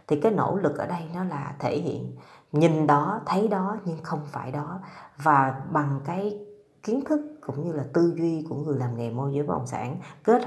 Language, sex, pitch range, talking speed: Vietnamese, female, 130-160 Hz, 220 wpm